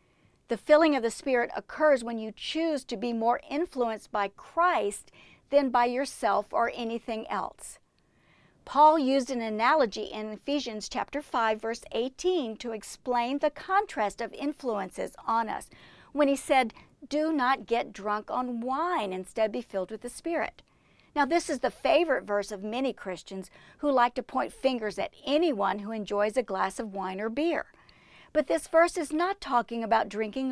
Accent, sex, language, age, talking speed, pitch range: American, female, English, 50-69, 170 wpm, 220-295 Hz